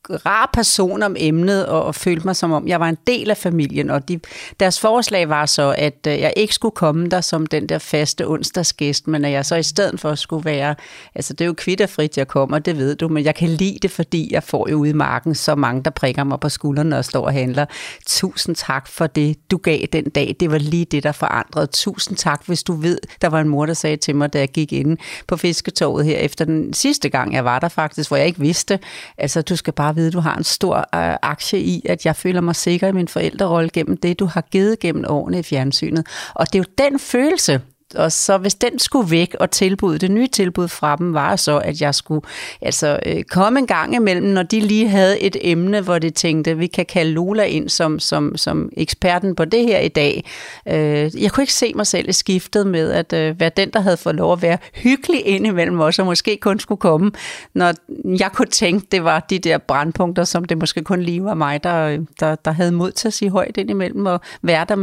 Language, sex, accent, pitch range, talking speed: Danish, female, native, 155-190 Hz, 240 wpm